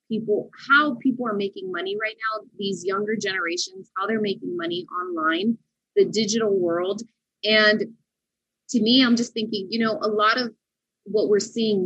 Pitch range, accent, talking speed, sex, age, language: 195-310 Hz, American, 165 wpm, female, 20-39, English